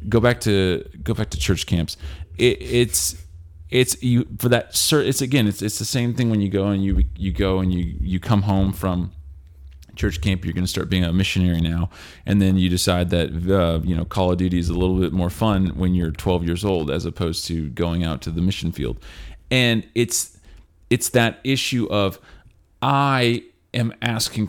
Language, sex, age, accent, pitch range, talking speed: English, male, 30-49, American, 90-115 Hz, 205 wpm